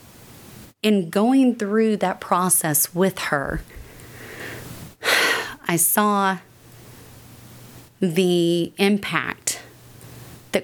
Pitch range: 140-190 Hz